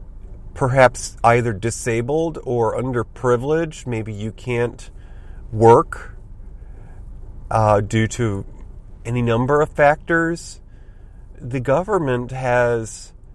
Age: 40-59